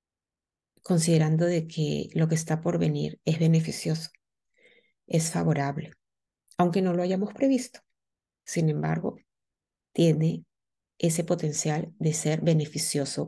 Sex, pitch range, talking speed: female, 150-170 Hz, 115 wpm